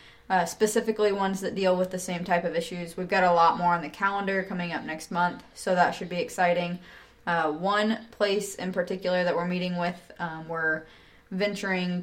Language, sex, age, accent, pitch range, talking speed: English, female, 20-39, American, 165-185 Hz, 200 wpm